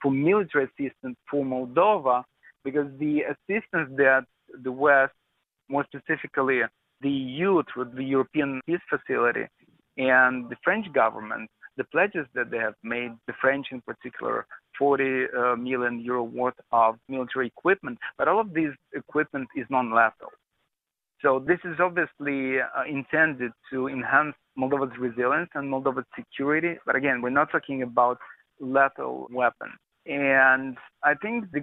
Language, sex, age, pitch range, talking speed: English, male, 40-59, 125-145 Hz, 140 wpm